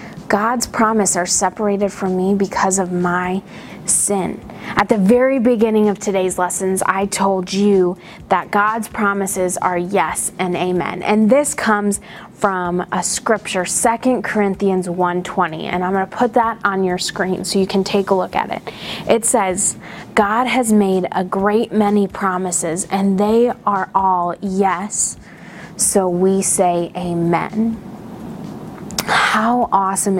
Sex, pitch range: female, 190-220 Hz